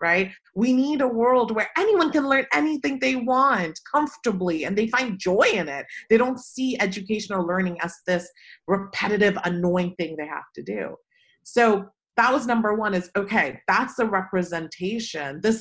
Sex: female